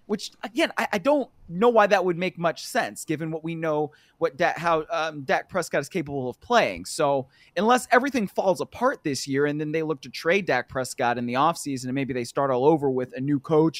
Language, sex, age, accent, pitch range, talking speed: English, male, 30-49, American, 140-195 Hz, 235 wpm